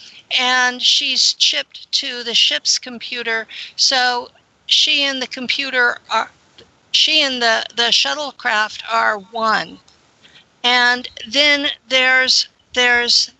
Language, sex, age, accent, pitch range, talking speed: English, female, 50-69, American, 230-260 Hz, 110 wpm